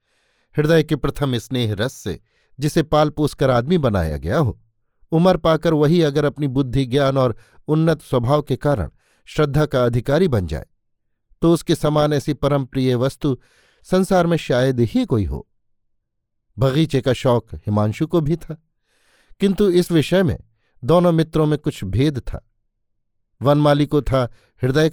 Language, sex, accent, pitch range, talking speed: Hindi, male, native, 115-155 Hz, 155 wpm